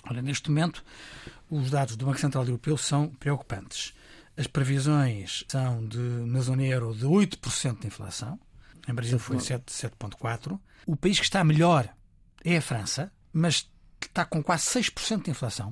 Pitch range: 125-160 Hz